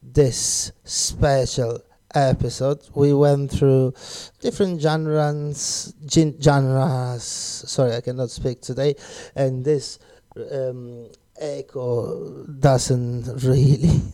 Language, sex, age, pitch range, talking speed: Italian, male, 30-49, 125-150 Hz, 90 wpm